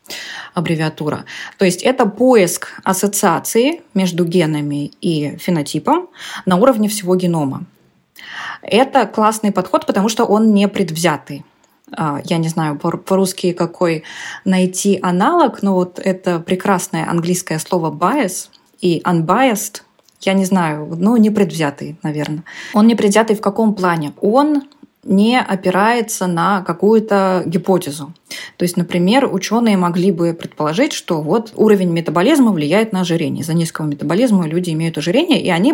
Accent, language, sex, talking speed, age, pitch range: native, Russian, female, 130 wpm, 20-39, 170-220 Hz